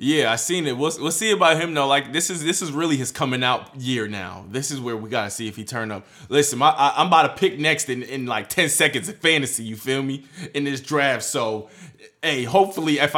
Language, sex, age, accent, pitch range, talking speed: English, male, 20-39, American, 110-160 Hz, 260 wpm